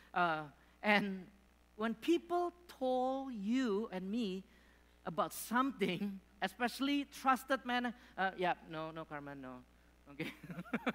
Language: English